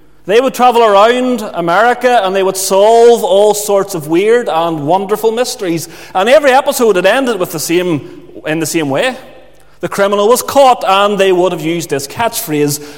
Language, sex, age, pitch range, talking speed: English, male, 30-49, 155-215 Hz, 165 wpm